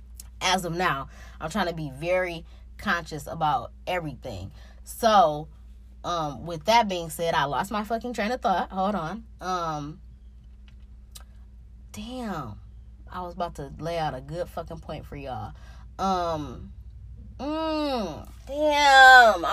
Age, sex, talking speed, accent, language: 20-39, female, 130 wpm, American, English